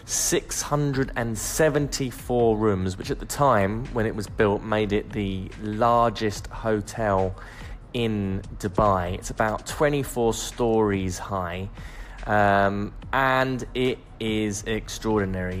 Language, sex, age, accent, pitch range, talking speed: English, male, 10-29, British, 100-120 Hz, 105 wpm